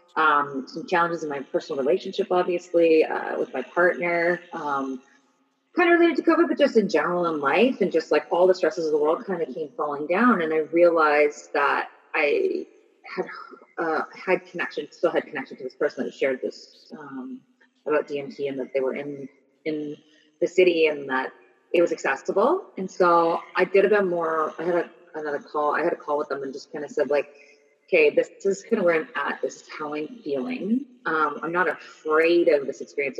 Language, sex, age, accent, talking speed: English, female, 30-49, American, 210 wpm